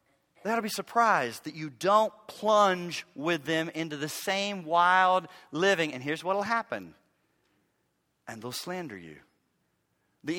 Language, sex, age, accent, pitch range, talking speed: English, male, 40-59, American, 160-200 Hz, 135 wpm